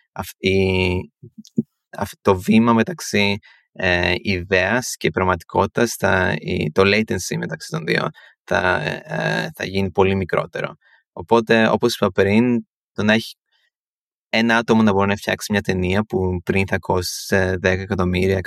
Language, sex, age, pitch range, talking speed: Greek, male, 20-39, 95-110 Hz, 135 wpm